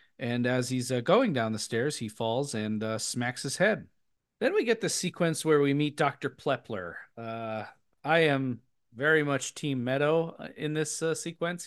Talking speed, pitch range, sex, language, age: 185 wpm, 120-155 Hz, male, English, 40-59